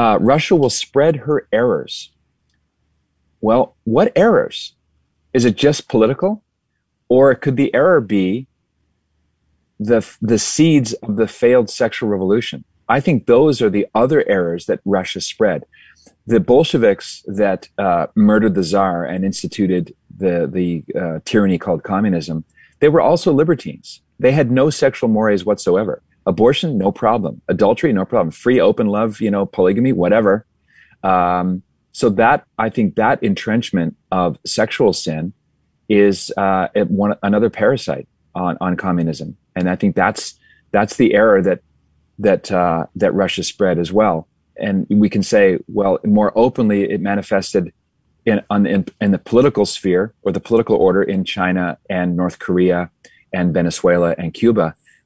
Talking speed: 150 wpm